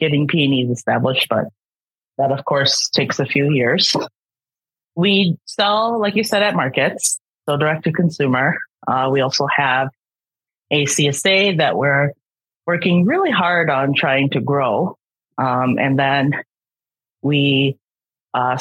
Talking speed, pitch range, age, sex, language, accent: 135 wpm, 130-155 Hz, 30-49, female, English, American